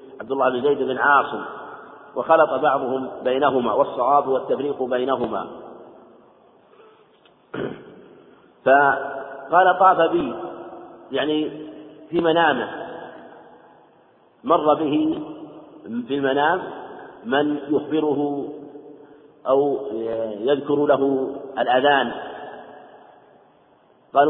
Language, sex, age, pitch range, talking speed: Arabic, male, 50-69, 135-160 Hz, 70 wpm